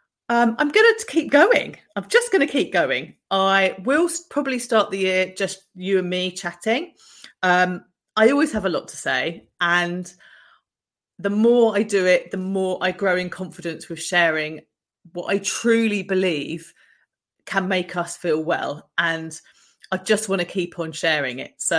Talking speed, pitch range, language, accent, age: 175 wpm, 165-205 Hz, English, British, 30-49